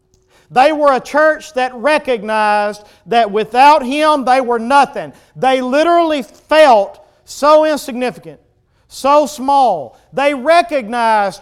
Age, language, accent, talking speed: 40-59, English, American, 110 wpm